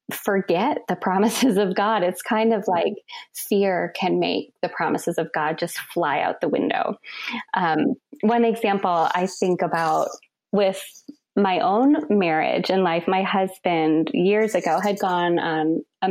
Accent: American